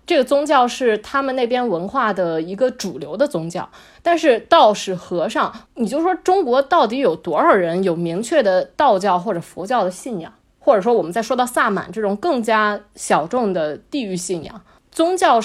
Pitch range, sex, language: 200-290 Hz, female, Chinese